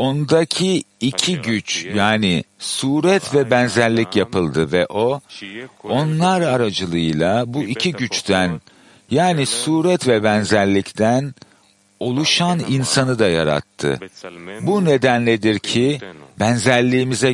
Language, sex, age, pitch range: Turkish, male, 50-69, 100-145 Hz